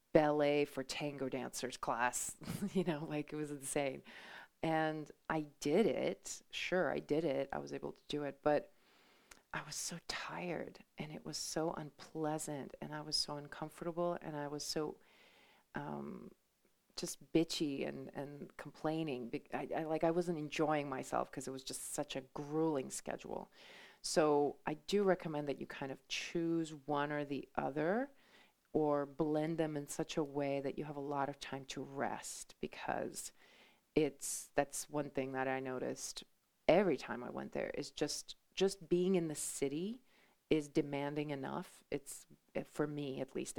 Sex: female